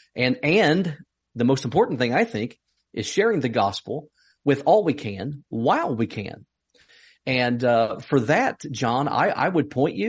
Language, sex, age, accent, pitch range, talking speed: English, male, 40-59, American, 130-175 Hz, 170 wpm